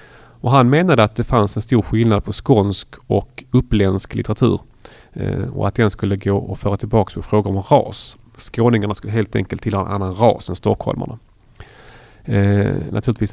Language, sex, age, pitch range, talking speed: Swedish, male, 30-49, 105-130 Hz, 175 wpm